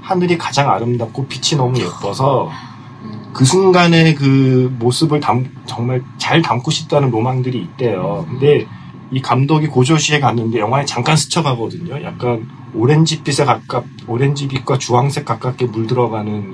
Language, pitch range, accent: Korean, 120-150 Hz, native